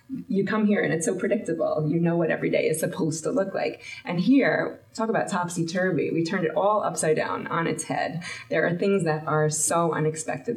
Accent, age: American, 20-39